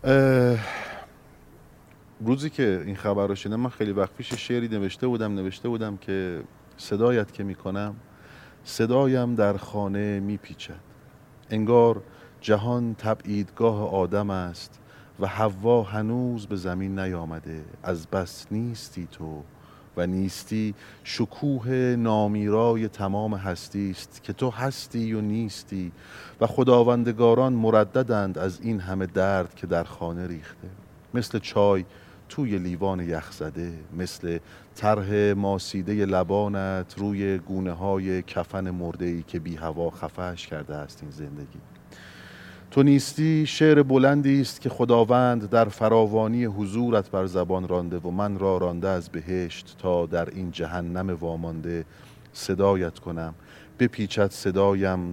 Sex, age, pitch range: male, 40-59, 90-110 Hz